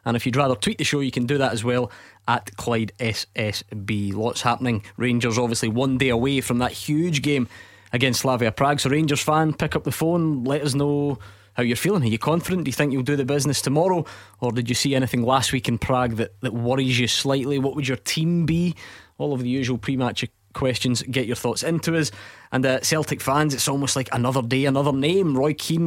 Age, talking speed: 20-39, 225 wpm